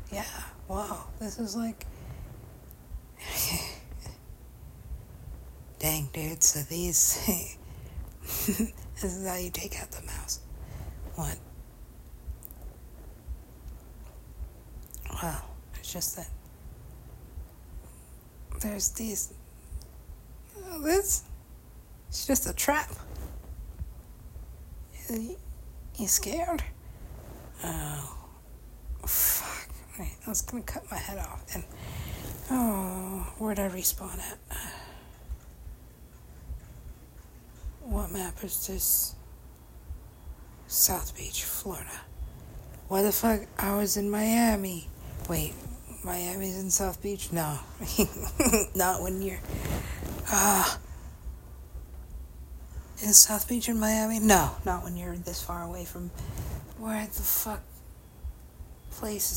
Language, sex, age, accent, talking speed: English, female, 60-79, American, 90 wpm